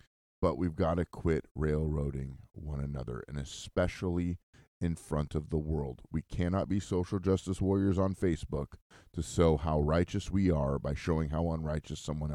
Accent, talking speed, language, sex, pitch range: American, 165 wpm, English, male, 75-95 Hz